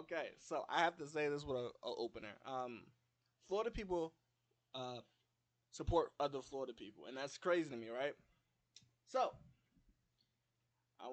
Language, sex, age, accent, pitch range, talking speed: English, male, 20-39, American, 120-145 Hz, 145 wpm